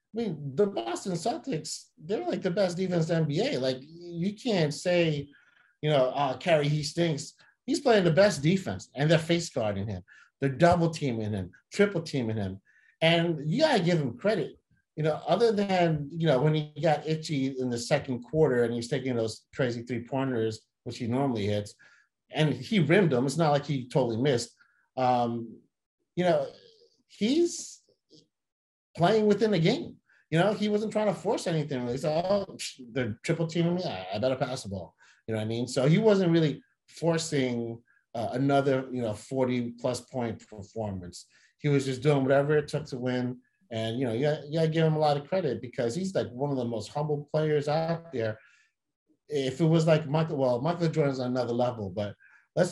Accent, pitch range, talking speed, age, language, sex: American, 125-170 Hz, 195 wpm, 30-49, English, male